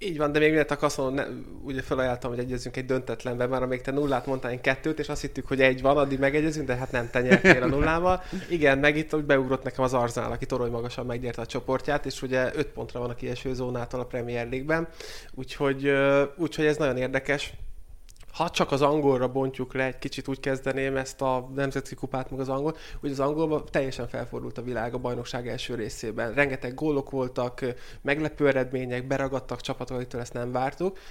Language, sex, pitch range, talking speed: Hungarian, male, 125-150 Hz, 195 wpm